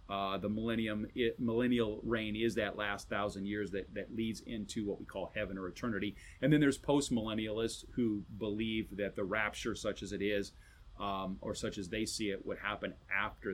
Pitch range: 100-125 Hz